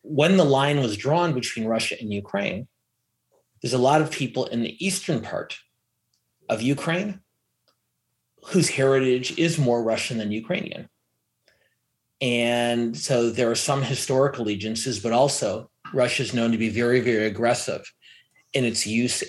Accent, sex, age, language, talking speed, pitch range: American, male, 30-49, English, 145 wpm, 115-135 Hz